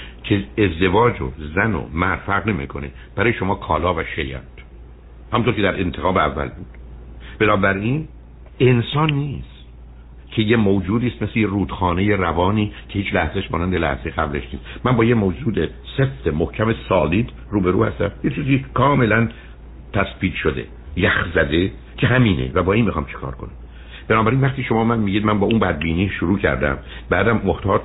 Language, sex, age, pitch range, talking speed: Persian, male, 60-79, 70-105 Hz, 165 wpm